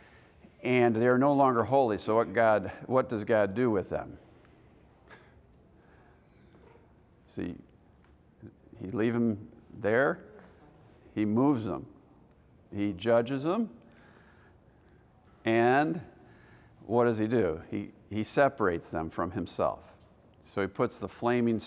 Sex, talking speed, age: male, 115 wpm, 50-69